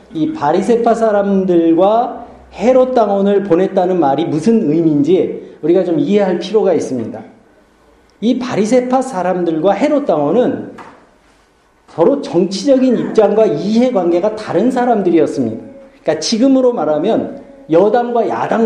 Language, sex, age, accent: Korean, male, 50-69, native